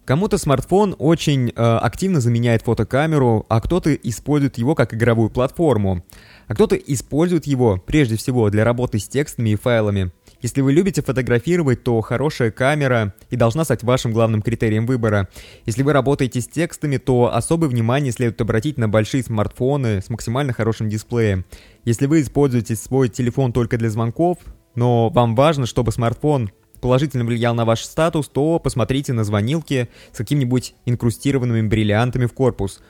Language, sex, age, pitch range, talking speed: Russian, male, 20-39, 115-140 Hz, 155 wpm